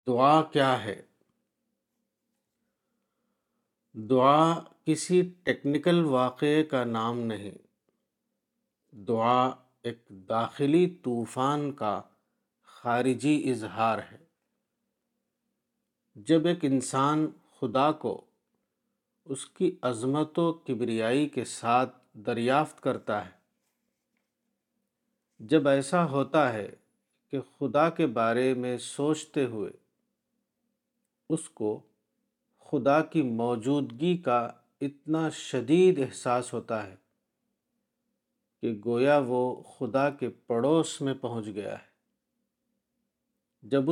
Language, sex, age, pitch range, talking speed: Urdu, male, 50-69, 120-160 Hz, 90 wpm